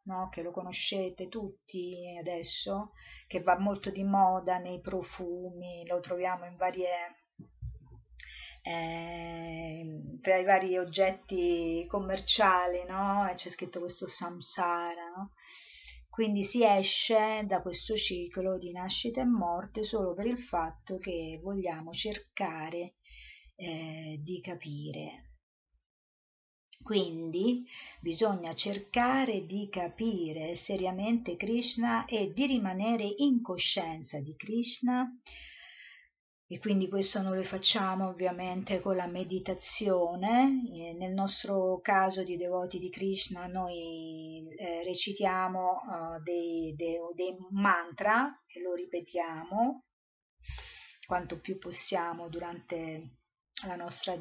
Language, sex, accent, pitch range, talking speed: Italian, female, native, 175-200 Hz, 105 wpm